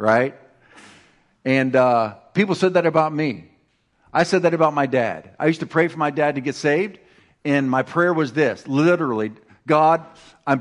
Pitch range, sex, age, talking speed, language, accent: 125-160 Hz, male, 50-69, 180 wpm, English, American